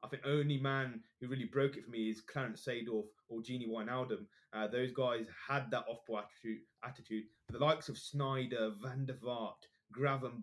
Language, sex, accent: English, male, British